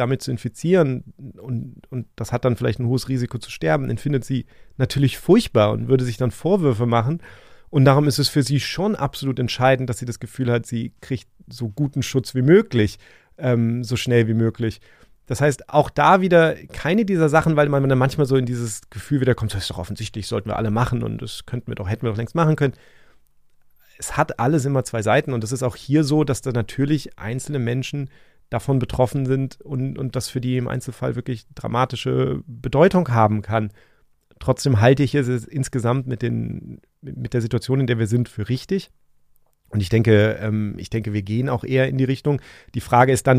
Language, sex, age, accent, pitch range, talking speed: German, male, 30-49, German, 115-140 Hz, 210 wpm